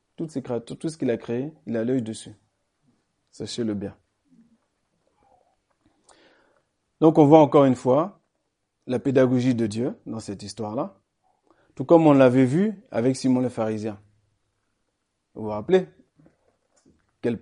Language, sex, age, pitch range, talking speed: French, male, 40-59, 110-150 Hz, 125 wpm